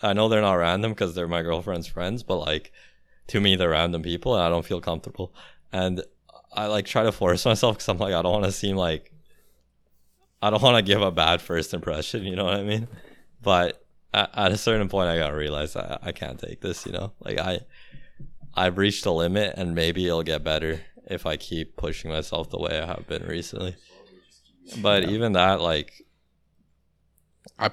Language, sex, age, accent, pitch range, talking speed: English, male, 20-39, American, 80-100 Hz, 200 wpm